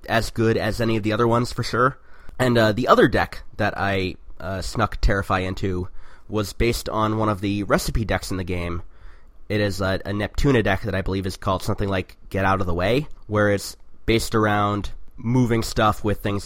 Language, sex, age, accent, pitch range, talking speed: English, male, 30-49, American, 90-105 Hz, 210 wpm